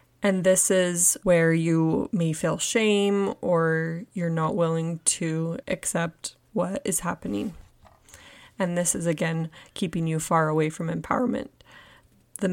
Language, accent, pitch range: English, American, 170-195 Hz